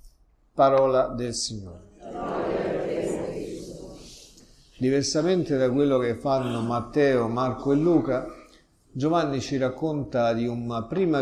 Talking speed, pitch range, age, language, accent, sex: 95 wpm, 110-135 Hz, 50-69, Italian, native, male